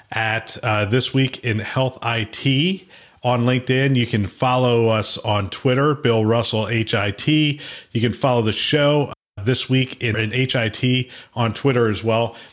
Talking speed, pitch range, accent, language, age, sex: 160 wpm, 115-135 Hz, American, English, 40-59, male